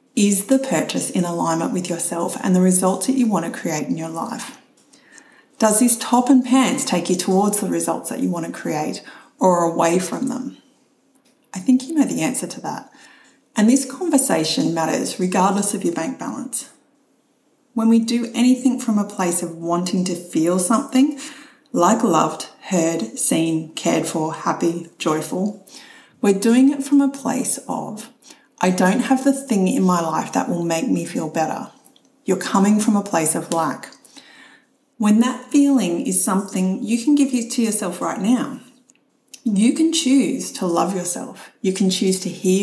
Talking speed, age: 175 wpm, 30-49